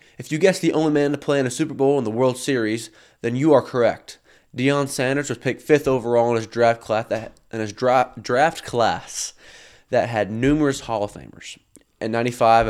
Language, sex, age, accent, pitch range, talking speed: English, male, 20-39, American, 115-135 Hz, 210 wpm